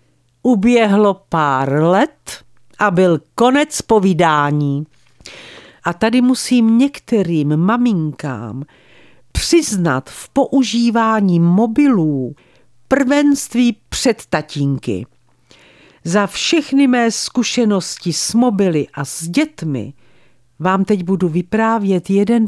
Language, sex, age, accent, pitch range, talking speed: Czech, female, 50-69, native, 155-230 Hz, 90 wpm